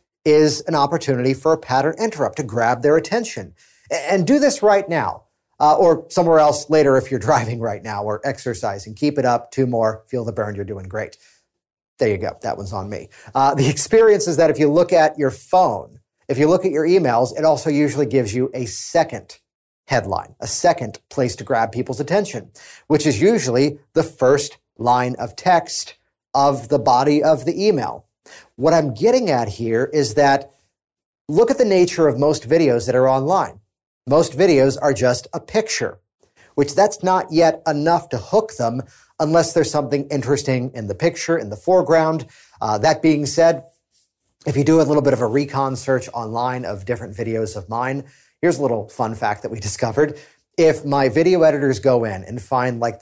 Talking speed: 190 wpm